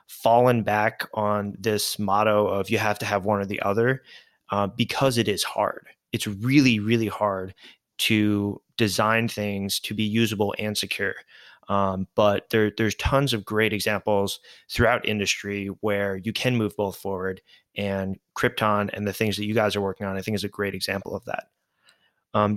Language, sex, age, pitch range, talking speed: English, male, 20-39, 100-115 Hz, 175 wpm